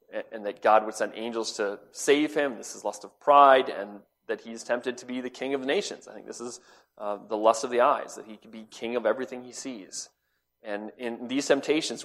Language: English